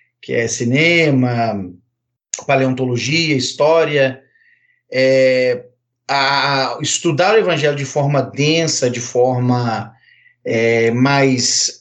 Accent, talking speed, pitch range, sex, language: Brazilian, 70 wpm, 130-175 Hz, male, Portuguese